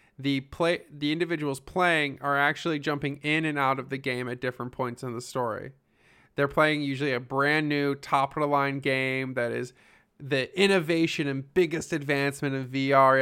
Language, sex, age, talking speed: English, male, 20-39, 170 wpm